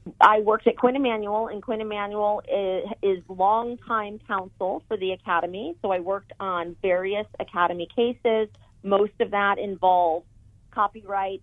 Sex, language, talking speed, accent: female, English, 140 wpm, American